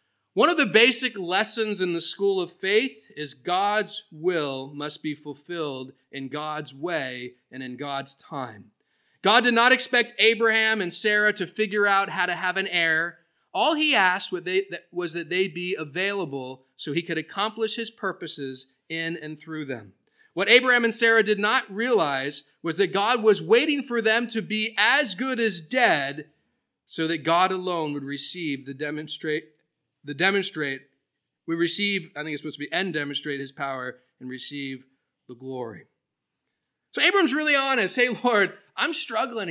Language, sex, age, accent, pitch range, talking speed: English, male, 30-49, American, 150-225 Hz, 165 wpm